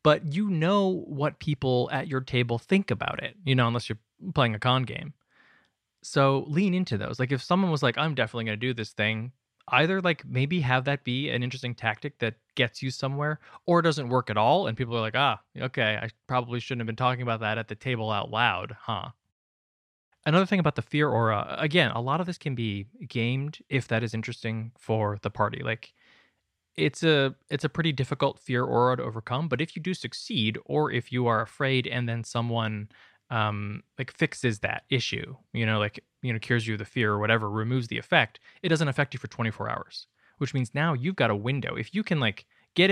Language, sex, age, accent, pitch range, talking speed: English, male, 20-39, American, 115-145 Hz, 220 wpm